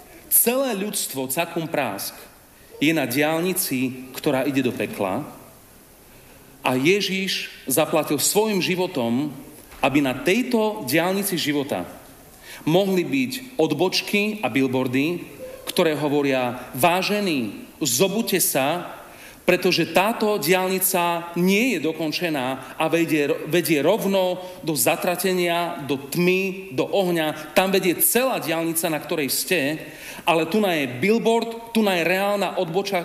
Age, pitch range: 40-59, 150-195 Hz